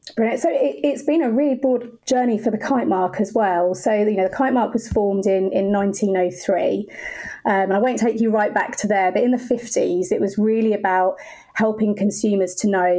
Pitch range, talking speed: 185-225 Hz, 220 wpm